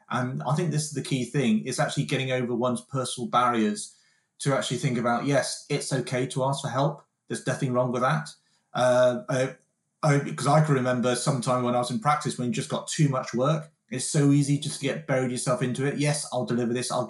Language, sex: English, male